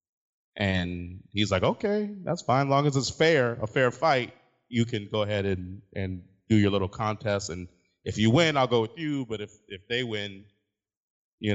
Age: 30-49